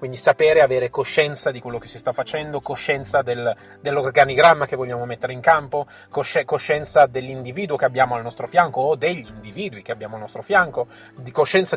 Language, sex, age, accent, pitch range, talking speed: Italian, male, 30-49, native, 125-155 Hz, 185 wpm